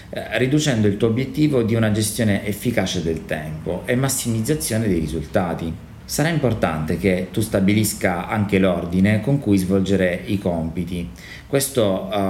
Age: 30-49